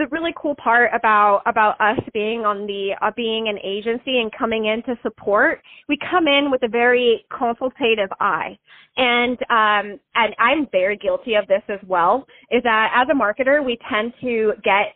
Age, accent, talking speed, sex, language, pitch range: 20-39, American, 185 wpm, female, English, 215-275 Hz